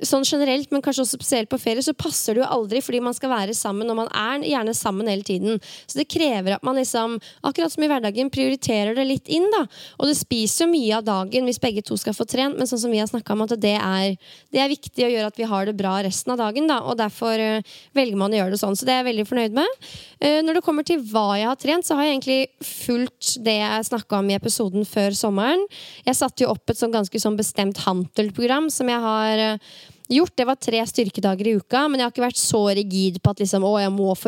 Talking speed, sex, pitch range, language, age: 265 wpm, female, 205-255 Hz, English, 20-39